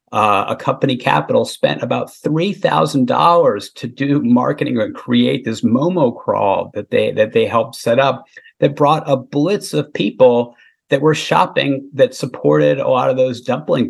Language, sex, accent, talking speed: English, male, American, 175 wpm